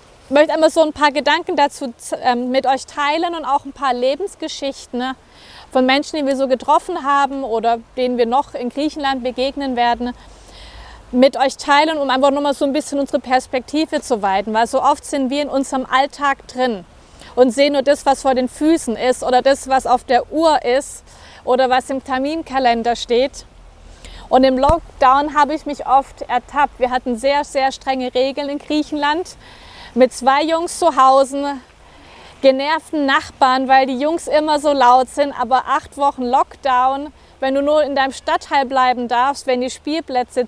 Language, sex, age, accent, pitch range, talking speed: German, female, 30-49, German, 255-295 Hz, 175 wpm